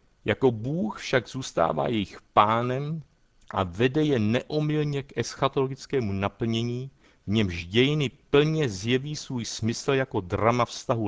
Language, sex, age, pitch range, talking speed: Czech, male, 60-79, 95-135 Hz, 125 wpm